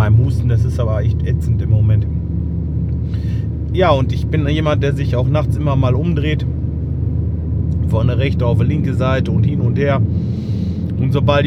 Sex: male